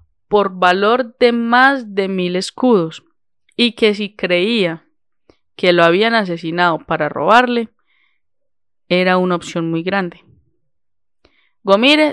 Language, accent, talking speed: Spanish, Colombian, 115 wpm